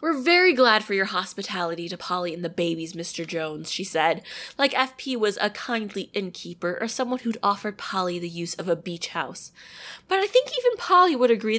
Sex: female